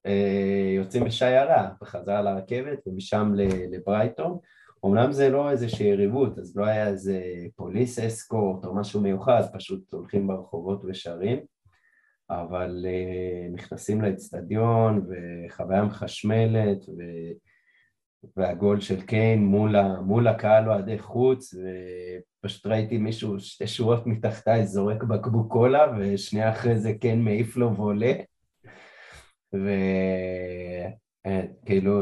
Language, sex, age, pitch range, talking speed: Hebrew, male, 20-39, 95-110 Hz, 100 wpm